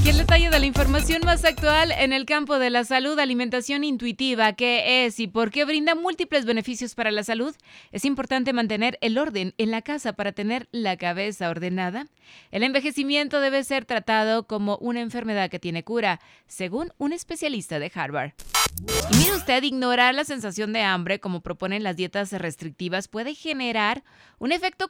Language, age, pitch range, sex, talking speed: Spanish, 20-39, 180-245 Hz, female, 175 wpm